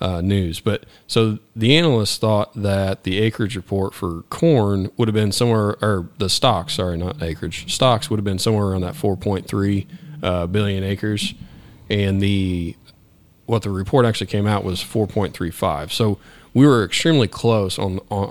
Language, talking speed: English, 165 wpm